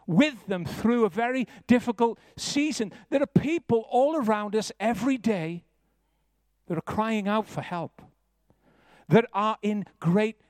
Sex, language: male, English